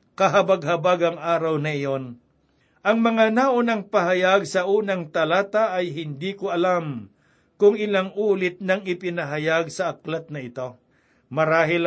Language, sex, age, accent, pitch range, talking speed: Filipino, male, 60-79, native, 160-195 Hz, 130 wpm